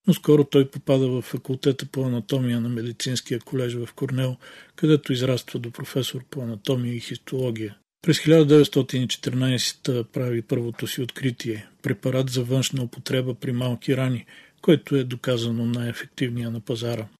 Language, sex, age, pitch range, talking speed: Bulgarian, male, 50-69, 125-140 Hz, 145 wpm